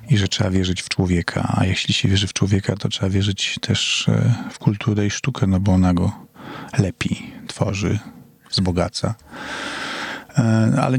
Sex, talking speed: male, 155 wpm